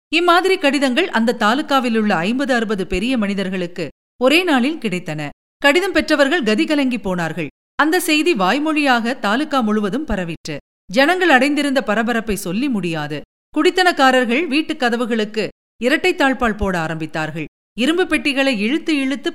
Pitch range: 205-290 Hz